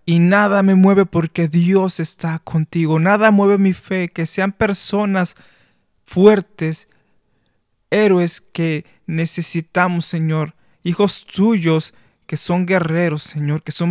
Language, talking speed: Spanish, 120 wpm